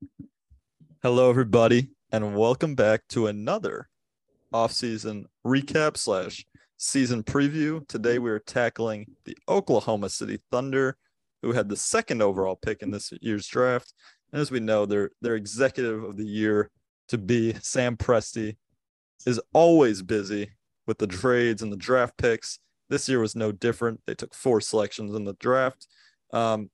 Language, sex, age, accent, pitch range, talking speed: English, male, 30-49, American, 105-130 Hz, 150 wpm